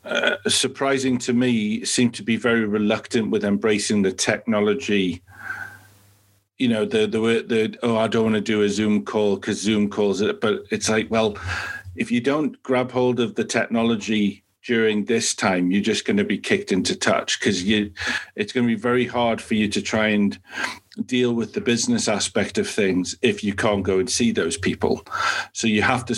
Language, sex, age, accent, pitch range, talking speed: English, male, 40-59, British, 105-125 Hz, 195 wpm